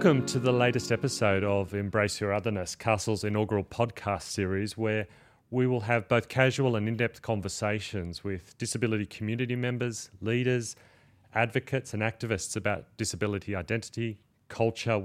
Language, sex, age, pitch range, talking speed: English, male, 30-49, 100-120 Hz, 135 wpm